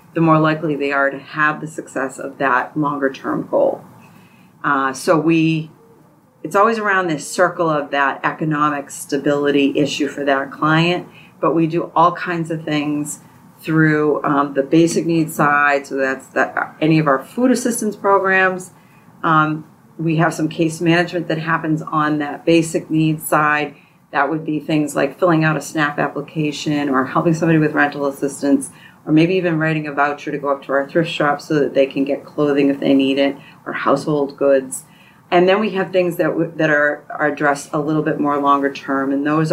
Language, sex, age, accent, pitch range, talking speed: English, female, 30-49, American, 145-165 Hz, 190 wpm